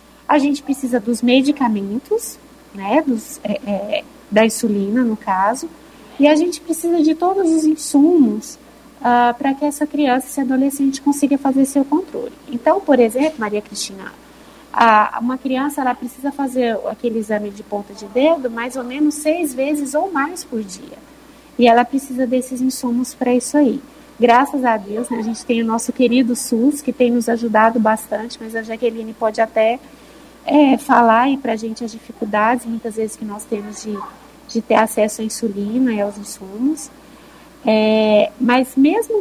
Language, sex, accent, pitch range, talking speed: Portuguese, female, Brazilian, 225-285 Hz, 160 wpm